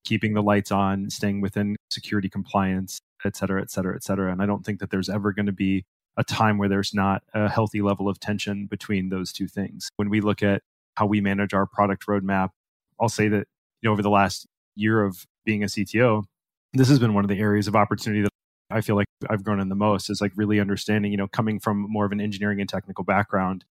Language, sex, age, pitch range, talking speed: English, male, 20-39, 100-110 Hz, 235 wpm